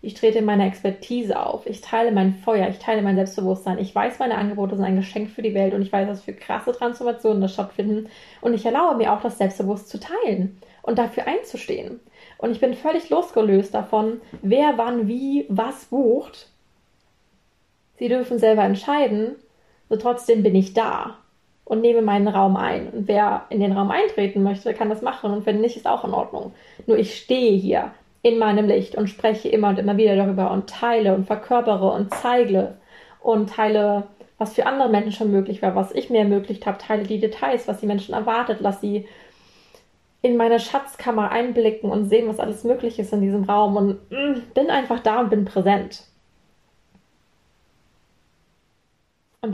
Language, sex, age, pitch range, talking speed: German, female, 20-39, 205-235 Hz, 185 wpm